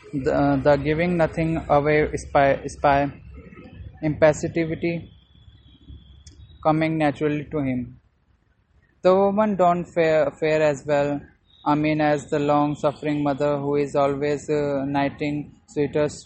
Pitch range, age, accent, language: 145-165 Hz, 20-39, Indian, English